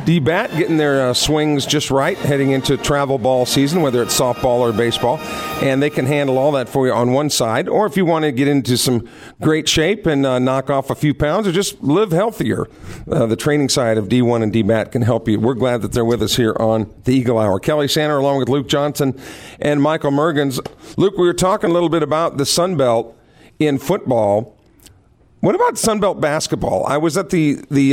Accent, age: American, 50-69